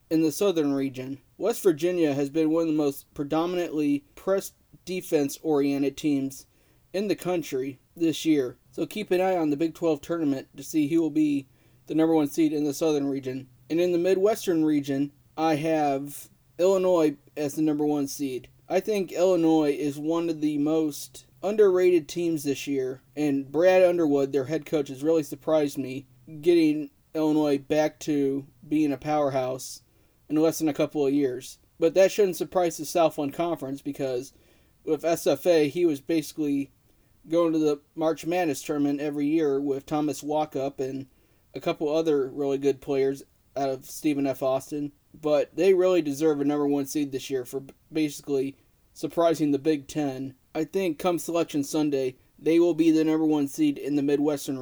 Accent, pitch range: American, 140-165 Hz